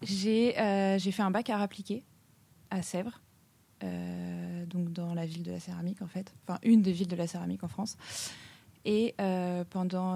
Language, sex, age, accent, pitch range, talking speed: French, female, 20-39, French, 175-195 Hz, 185 wpm